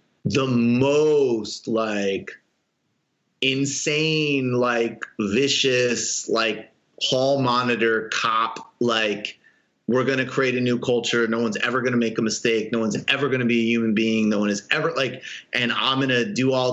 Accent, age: American, 30-49